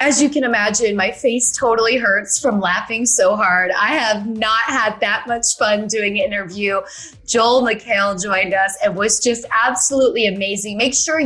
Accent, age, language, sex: American, 20-39, English, female